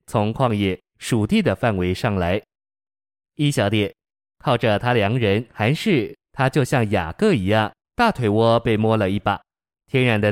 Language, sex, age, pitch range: Chinese, male, 20-39, 105-125 Hz